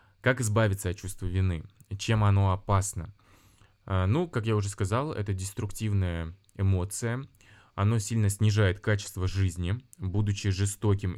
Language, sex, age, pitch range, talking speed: Russian, male, 20-39, 95-110 Hz, 125 wpm